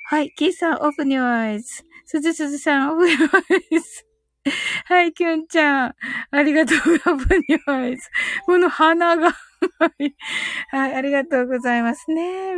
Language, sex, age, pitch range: Japanese, female, 20-39, 205-315 Hz